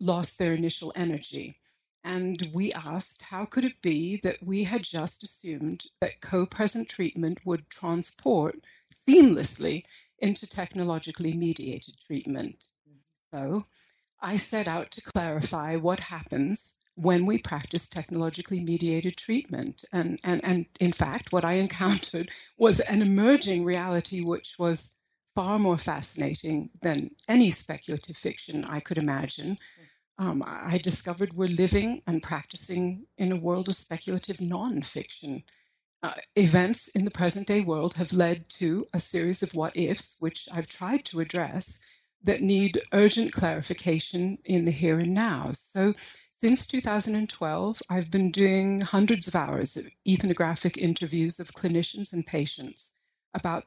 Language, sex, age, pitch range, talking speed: English, female, 60-79, 165-195 Hz, 135 wpm